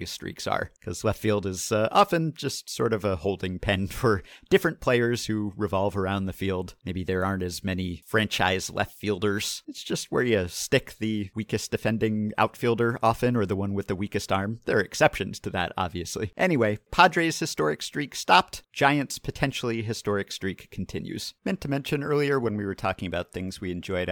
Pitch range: 95-145 Hz